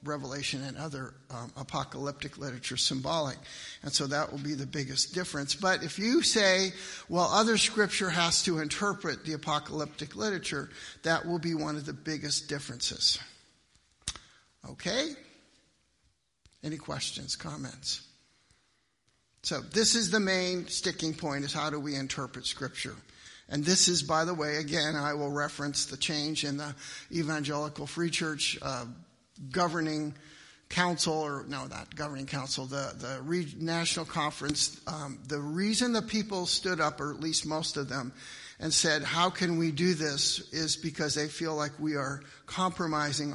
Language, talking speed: English, 155 wpm